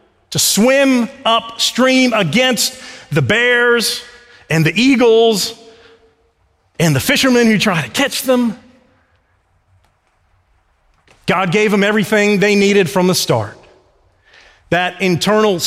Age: 40-59